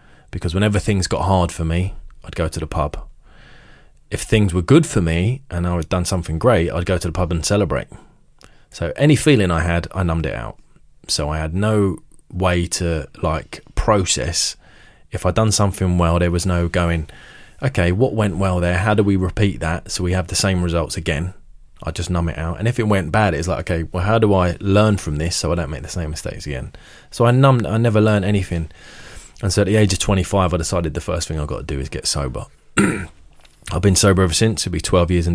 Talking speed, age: 235 wpm, 20-39